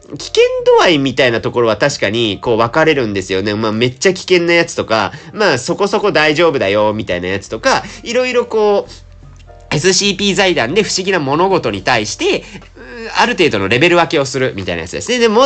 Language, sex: Japanese, male